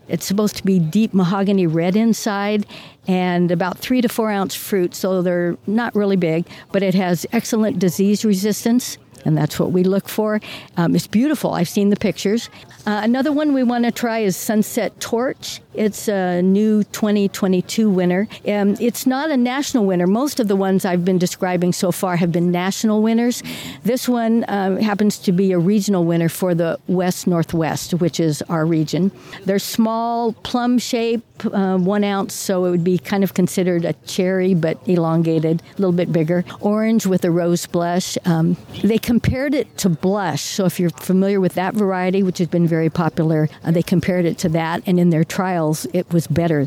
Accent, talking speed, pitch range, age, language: American, 190 wpm, 175-210 Hz, 60-79, English